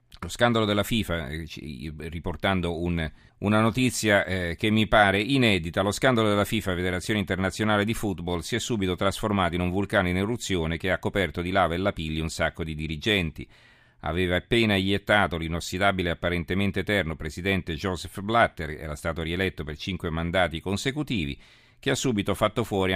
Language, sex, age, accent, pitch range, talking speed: Italian, male, 40-59, native, 85-105 Hz, 160 wpm